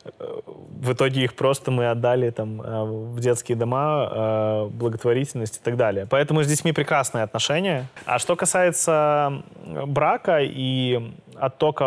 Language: Russian